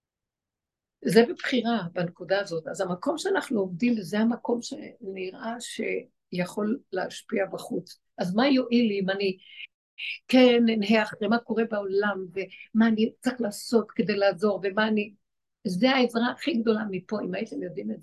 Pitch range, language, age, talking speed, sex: 195-240 Hz, Hebrew, 60-79, 140 wpm, female